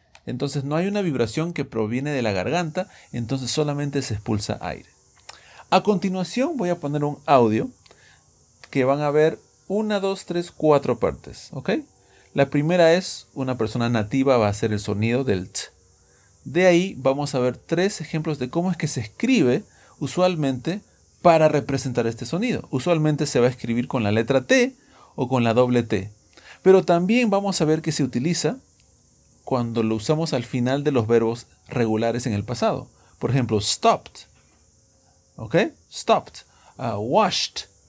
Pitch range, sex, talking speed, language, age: 115-160 Hz, male, 160 wpm, English, 40-59